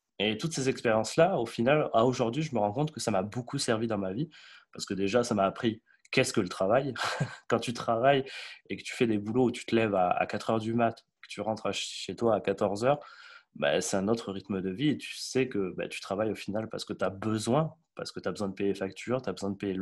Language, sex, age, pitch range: French, male, 20-39, 105-135 Hz